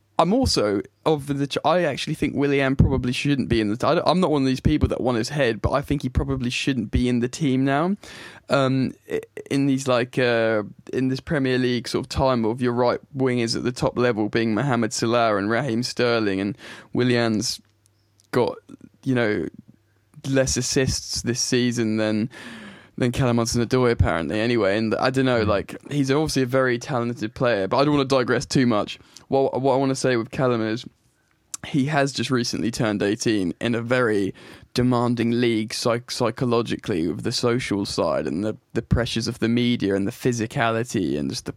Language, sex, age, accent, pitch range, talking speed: English, male, 10-29, British, 115-135 Hz, 195 wpm